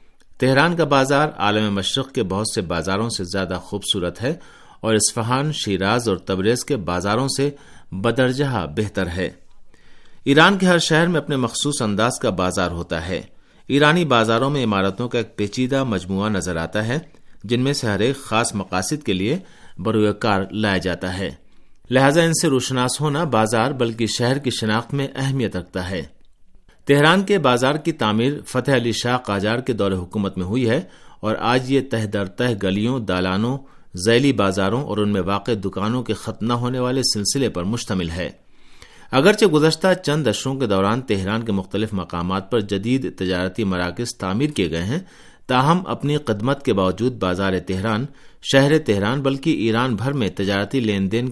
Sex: male